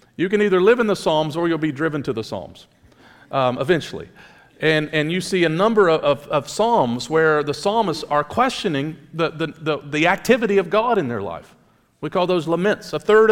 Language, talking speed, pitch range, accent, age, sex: English, 210 wpm, 135-195 Hz, American, 50-69, male